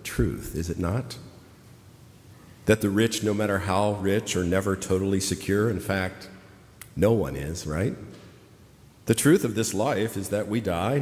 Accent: American